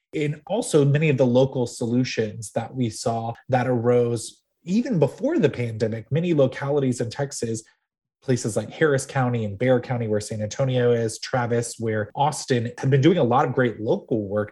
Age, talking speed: 20-39, 180 wpm